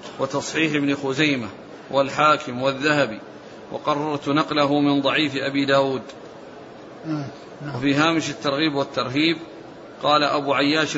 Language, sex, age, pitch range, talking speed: Arabic, male, 40-59, 140-155 Hz, 100 wpm